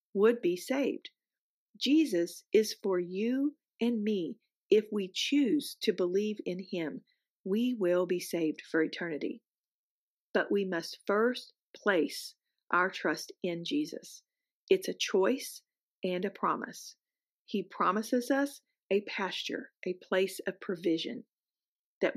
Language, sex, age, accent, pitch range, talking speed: English, female, 50-69, American, 185-240 Hz, 125 wpm